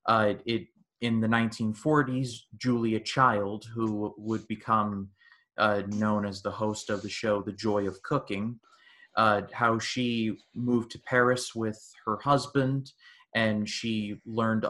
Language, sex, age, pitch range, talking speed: English, male, 20-39, 105-125 Hz, 140 wpm